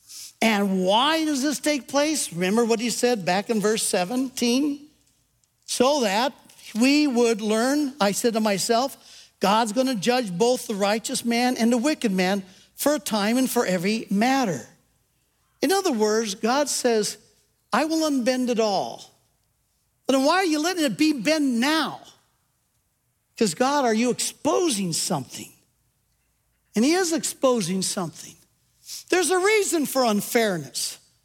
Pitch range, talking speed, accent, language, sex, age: 210-290 Hz, 145 wpm, American, English, male, 60-79